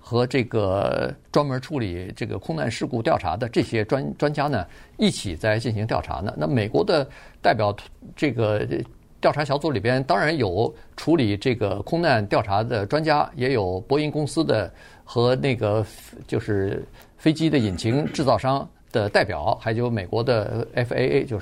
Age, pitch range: 50-69, 105-135 Hz